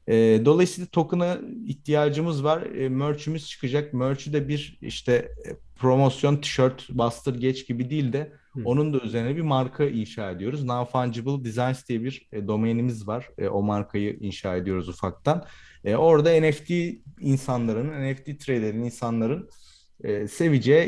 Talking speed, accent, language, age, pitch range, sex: 125 wpm, native, Turkish, 30-49, 115-145 Hz, male